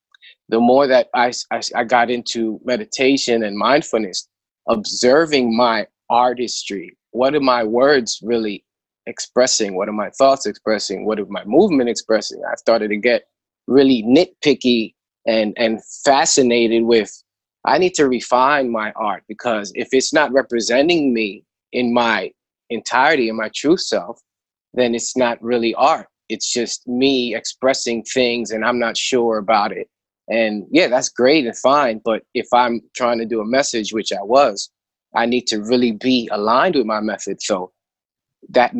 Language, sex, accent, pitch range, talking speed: English, male, American, 115-130 Hz, 160 wpm